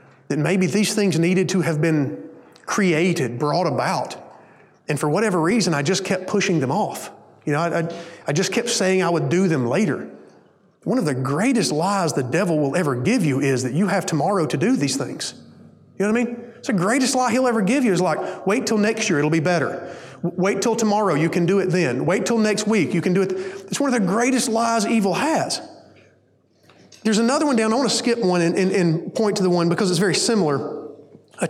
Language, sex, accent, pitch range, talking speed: English, male, American, 155-205 Hz, 230 wpm